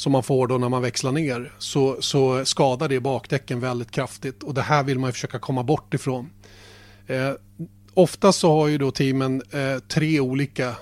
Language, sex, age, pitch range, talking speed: Swedish, male, 30-49, 125-145 Hz, 195 wpm